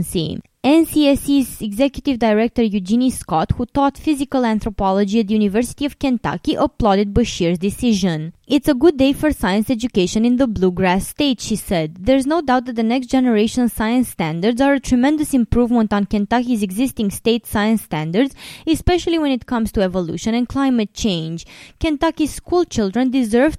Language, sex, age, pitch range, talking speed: English, female, 20-39, 200-270 Hz, 155 wpm